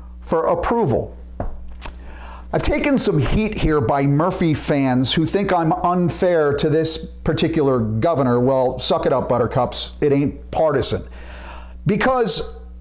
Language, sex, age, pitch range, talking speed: English, male, 50-69, 140-215 Hz, 125 wpm